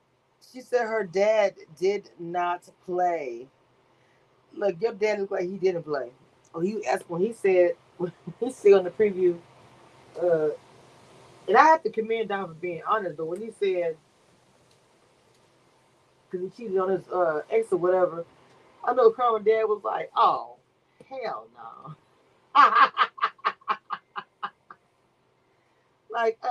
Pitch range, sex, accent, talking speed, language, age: 170-215 Hz, female, American, 135 wpm, English, 30-49